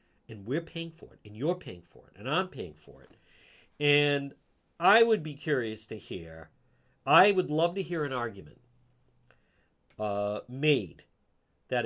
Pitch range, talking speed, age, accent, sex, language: 120-180 Hz, 160 wpm, 50-69, American, male, English